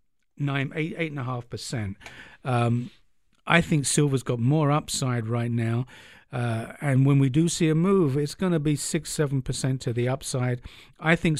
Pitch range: 130-160 Hz